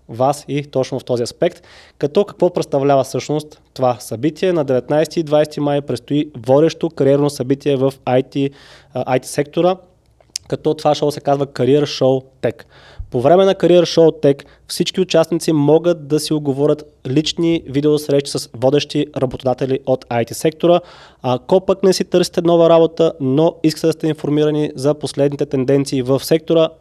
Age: 20-39